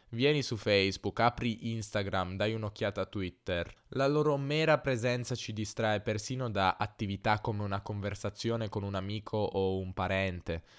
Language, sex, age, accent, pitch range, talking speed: Italian, male, 10-29, native, 100-120 Hz, 150 wpm